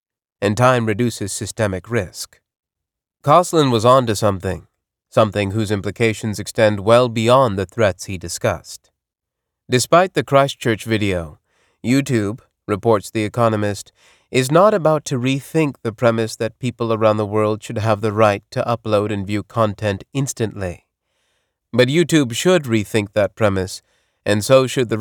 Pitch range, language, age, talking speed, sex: 105-130 Hz, English, 30-49, 145 wpm, male